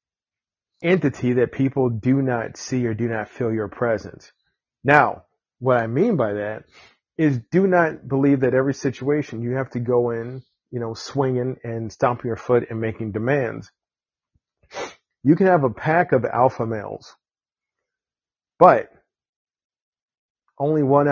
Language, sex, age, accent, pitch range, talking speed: English, male, 40-59, American, 115-135 Hz, 145 wpm